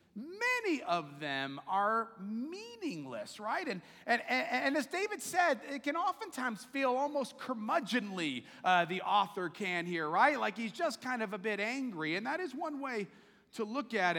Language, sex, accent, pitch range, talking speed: English, male, American, 225-295 Hz, 175 wpm